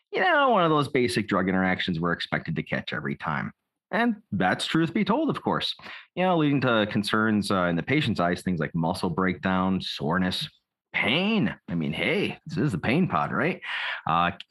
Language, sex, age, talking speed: English, male, 30-49, 195 wpm